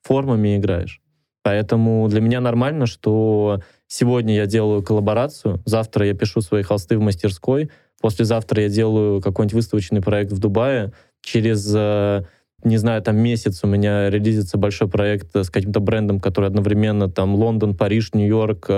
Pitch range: 105-115 Hz